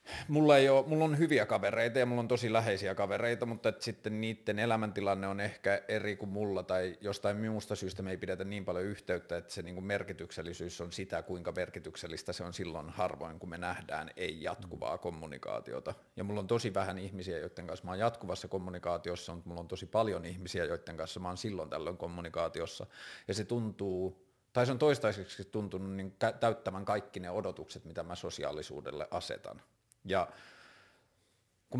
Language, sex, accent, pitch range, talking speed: Finnish, male, native, 90-110 Hz, 175 wpm